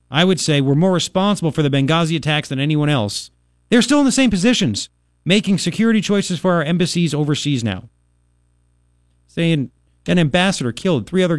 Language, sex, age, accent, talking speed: English, male, 40-59, American, 175 wpm